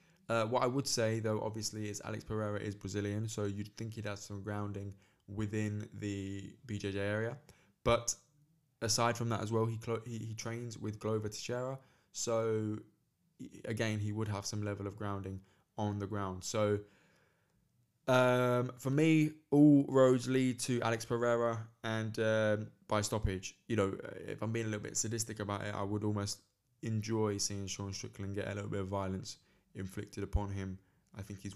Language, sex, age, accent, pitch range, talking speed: English, male, 20-39, British, 100-115 Hz, 180 wpm